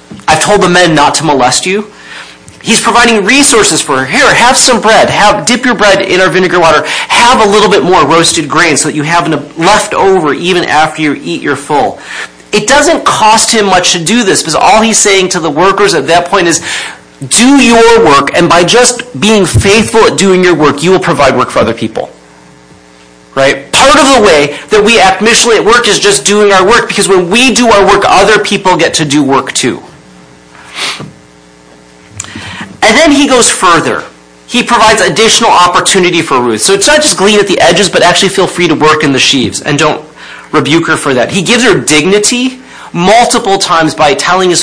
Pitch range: 150-215 Hz